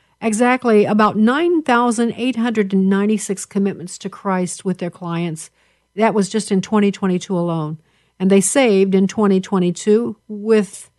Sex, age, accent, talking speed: female, 50-69, American, 115 wpm